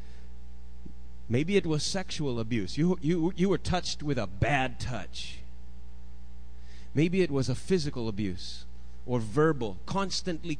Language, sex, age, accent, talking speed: English, male, 30-49, American, 130 wpm